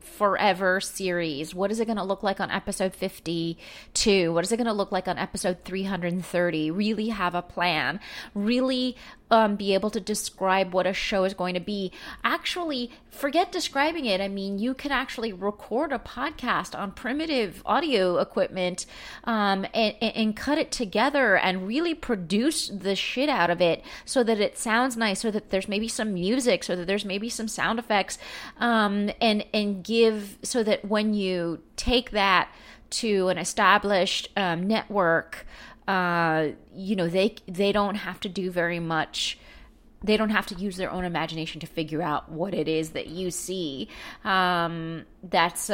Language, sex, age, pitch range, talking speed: English, female, 30-49, 180-220 Hz, 175 wpm